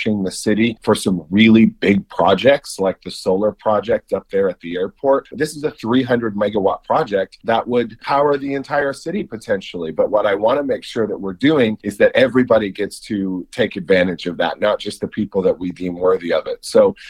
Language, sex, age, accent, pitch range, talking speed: English, male, 40-59, American, 110-140 Hz, 205 wpm